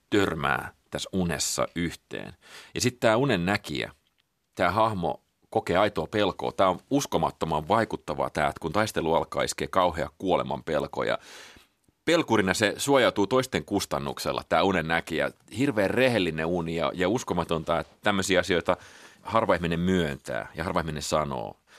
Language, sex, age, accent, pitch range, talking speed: Finnish, male, 30-49, native, 85-100 Hz, 140 wpm